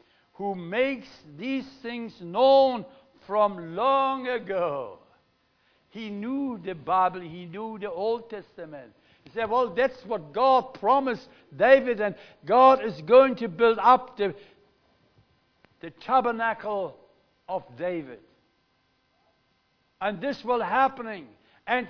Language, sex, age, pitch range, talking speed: English, male, 60-79, 210-250 Hz, 115 wpm